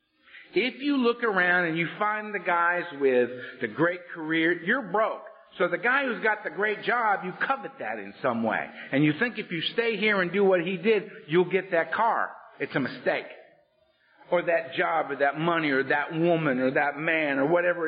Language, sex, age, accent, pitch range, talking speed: English, male, 50-69, American, 175-235 Hz, 210 wpm